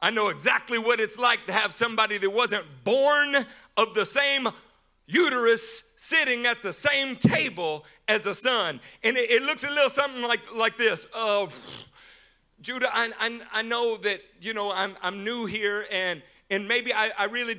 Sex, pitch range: male, 195-275 Hz